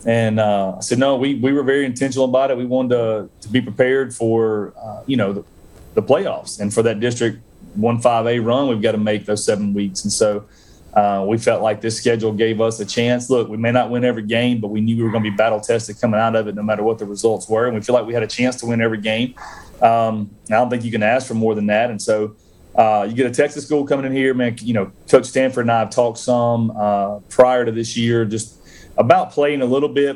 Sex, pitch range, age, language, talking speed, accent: male, 105-120 Hz, 30-49, English, 265 wpm, American